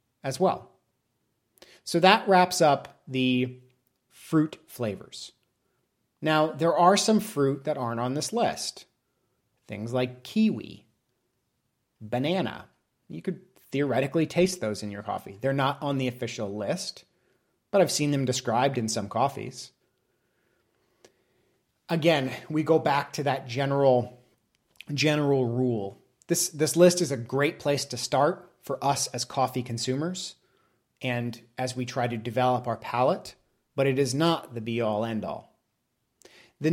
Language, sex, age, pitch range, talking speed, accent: English, male, 30-49, 125-155 Hz, 135 wpm, American